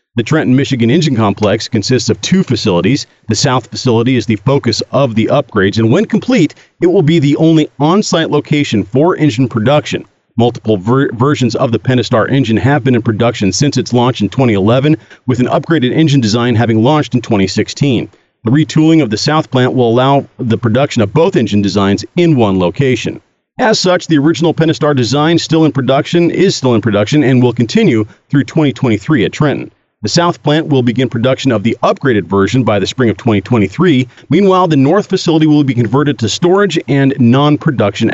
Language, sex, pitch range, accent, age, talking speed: English, male, 110-150 Hz, American, 40-59, 185 wpm